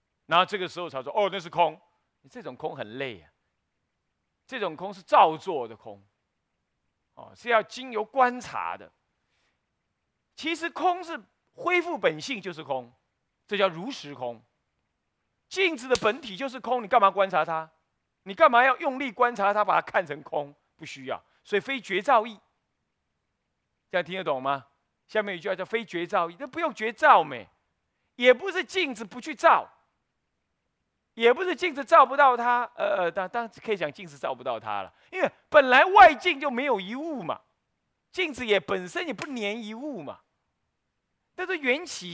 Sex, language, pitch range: male, Chinese, 170-285 Hz